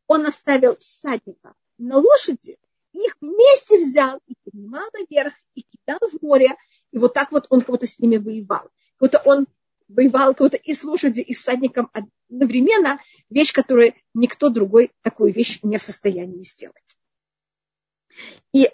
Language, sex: Russian, female